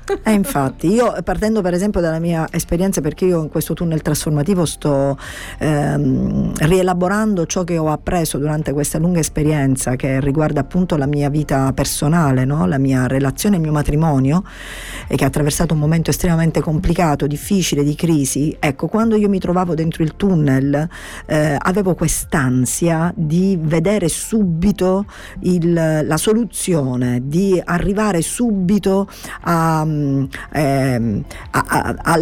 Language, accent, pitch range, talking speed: Italian, native, 150-185 Hz, 135 wpm